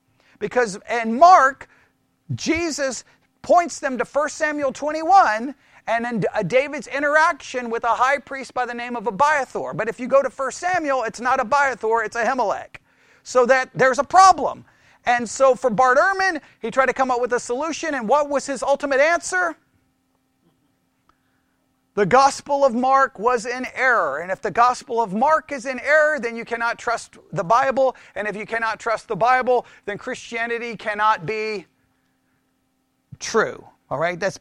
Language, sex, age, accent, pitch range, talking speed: English, male, 40-59, American, 225-275 Hz, 170 wpm